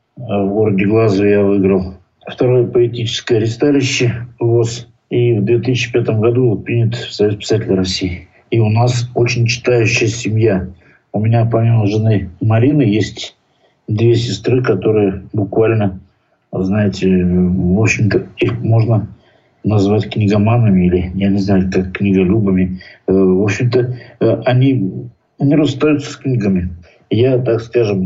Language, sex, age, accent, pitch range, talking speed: Russian, male, 50-69, native, 100-120 Hz, 120 wpm